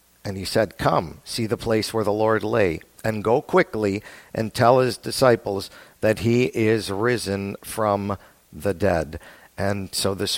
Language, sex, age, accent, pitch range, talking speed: English, male, 50-69, American, 100-115 Hz, 160 wpm